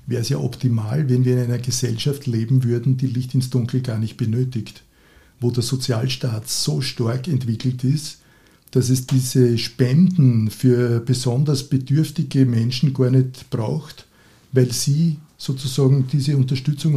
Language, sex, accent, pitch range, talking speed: German, male, Austrian, 125-145 Hz, 145 wpm